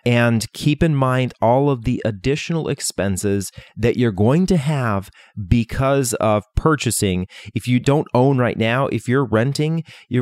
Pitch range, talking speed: 105-130 Hz, 160 wpm